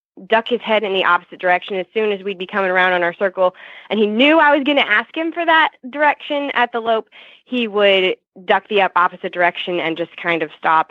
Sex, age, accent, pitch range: female, 20-39, American, 175-230 Hz